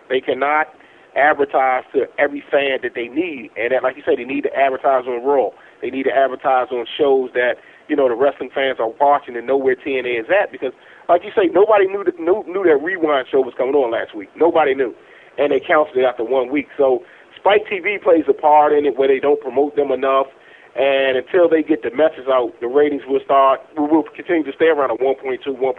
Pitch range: 135-185 Hz